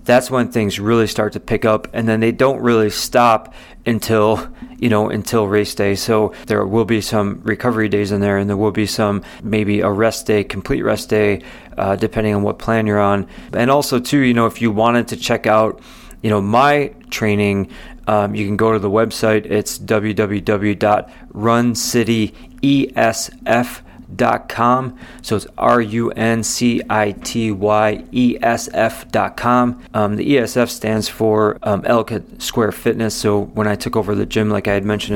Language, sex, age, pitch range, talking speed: English, male, 30-49, 105-115 Hz, 165 wpm